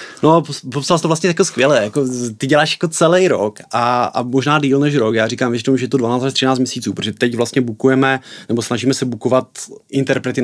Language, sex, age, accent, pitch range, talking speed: Czech, male, 30-49, native, 115-130 Hz, 215 wpm